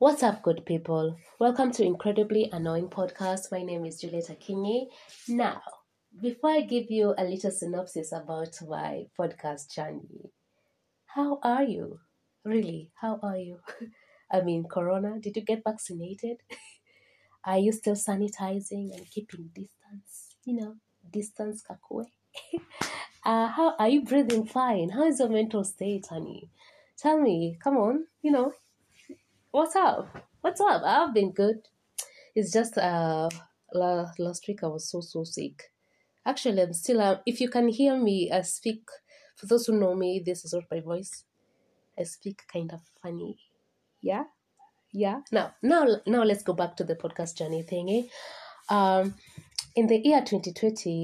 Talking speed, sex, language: 155 wpm, female, English